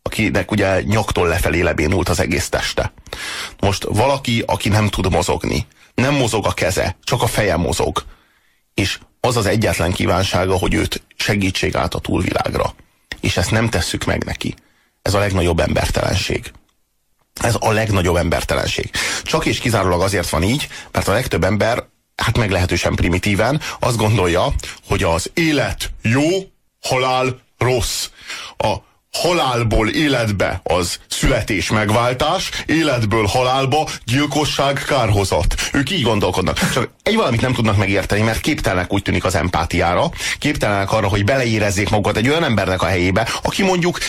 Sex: male